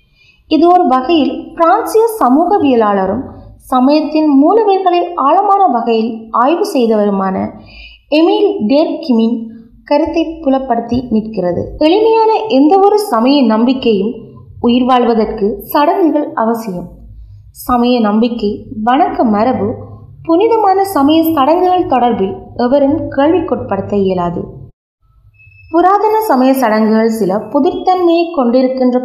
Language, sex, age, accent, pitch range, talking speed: Tamil, female, 20-39, native, 205-300 Hz, 80 wpm